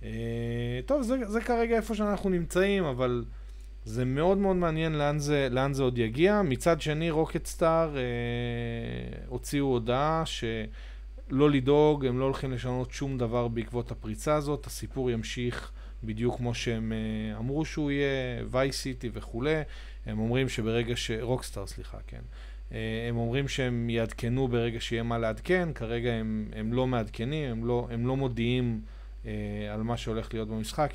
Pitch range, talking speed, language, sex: 110-135 Hz, 150 wpm, Hebrew, male